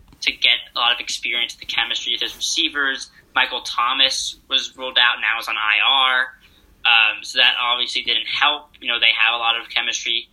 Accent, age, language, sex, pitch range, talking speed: American, 10-29, English, male, 120-140 Hz, 200 wpm